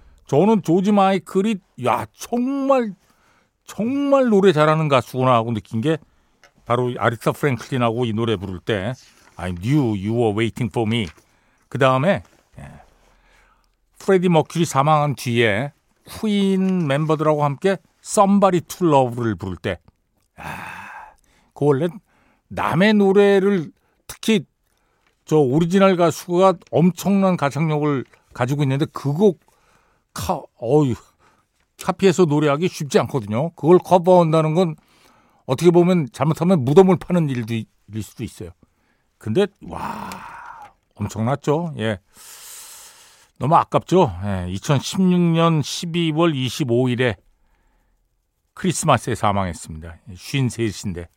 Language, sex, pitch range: Korean, male, 120-185 Hz